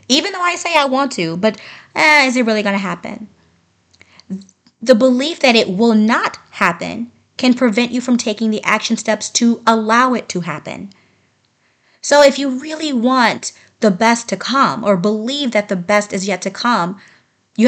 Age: 30-49